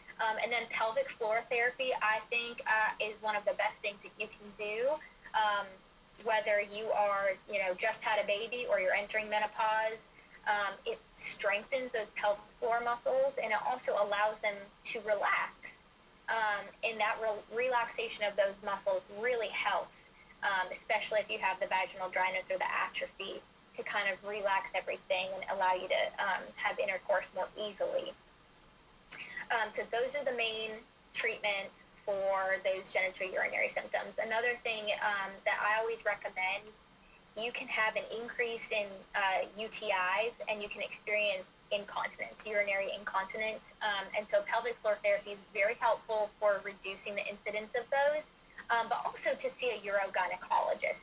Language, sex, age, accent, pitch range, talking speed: English, female, 10-29, American, 205-240 Hz, 160 wpm